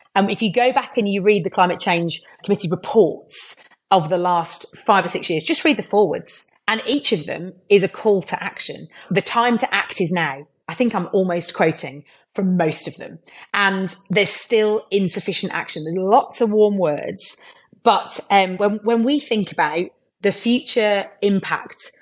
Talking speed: 185 wpm